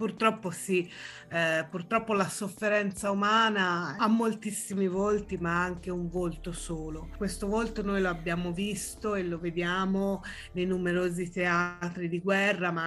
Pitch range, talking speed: 170-195 Hz, 135 wpm